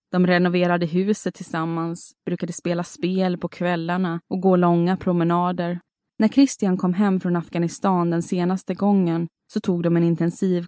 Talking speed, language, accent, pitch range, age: 150 wpm, Swedish, native, 175-195 Hz, 20-39